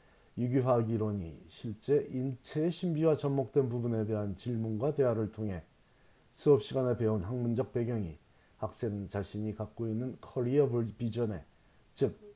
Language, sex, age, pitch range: Korean, male, 40-59, 105-135 Hz